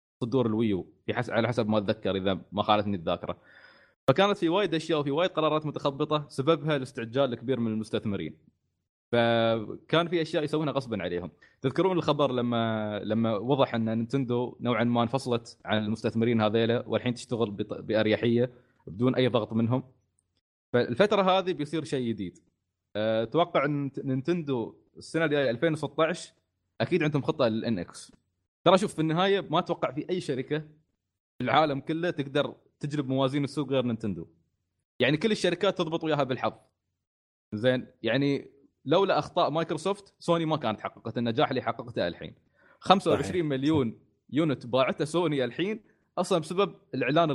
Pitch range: 115-155 Hz